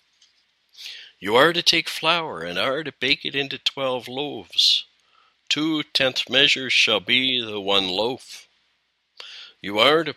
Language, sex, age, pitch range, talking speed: English, male, 60-79, 110-135 Hz, 140 wpm